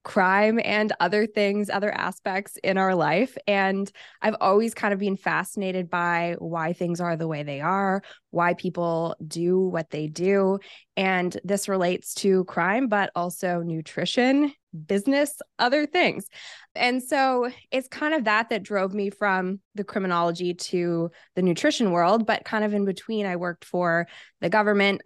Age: 20-39